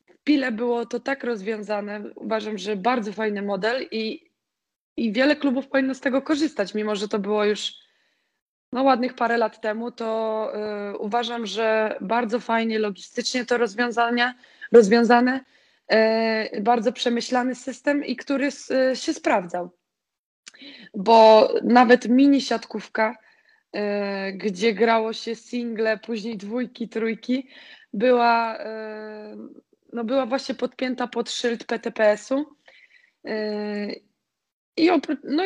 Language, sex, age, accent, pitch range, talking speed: Polish, female, 20-39, native, 220-255 Hz, 105 wpm